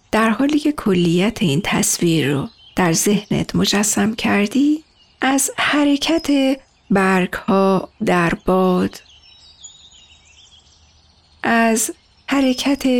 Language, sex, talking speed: Persian, female, 90 wpm